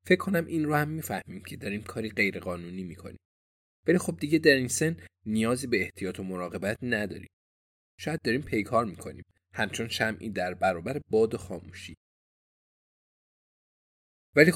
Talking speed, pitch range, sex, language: 150 wpm, 90-120 Hz, male, Persian